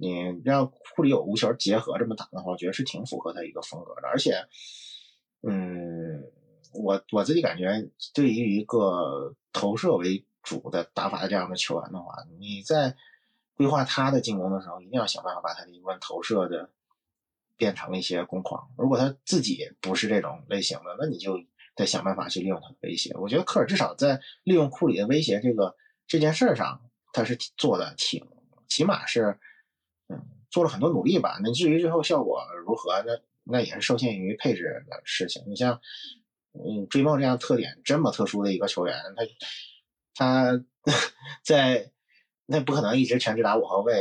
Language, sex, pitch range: Chinese, male, 95-150 Hz